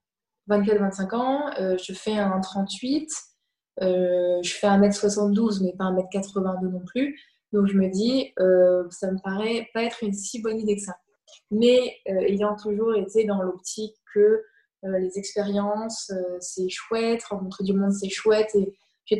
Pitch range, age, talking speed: 190-225 Hz, 20-39, 180 wpm